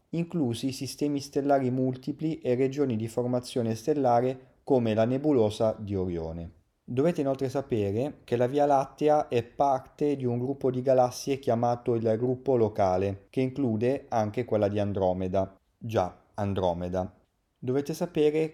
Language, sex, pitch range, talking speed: Italian, male, 105-135 Hz, 135 wpm